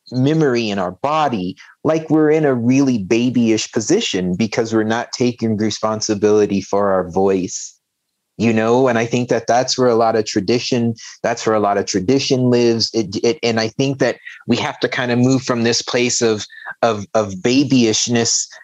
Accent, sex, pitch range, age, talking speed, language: American, male, 115-130 Hz, 30-49, 185 wpm, English